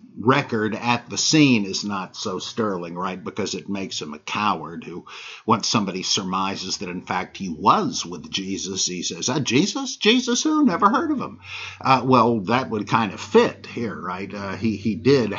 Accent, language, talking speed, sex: American, English, 190 wpm, male